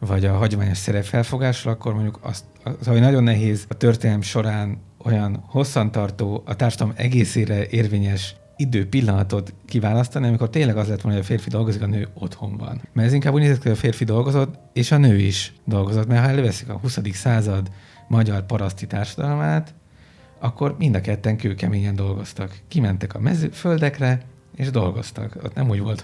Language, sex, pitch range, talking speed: Hungarian, male, 105-125 Hz, 170 wpm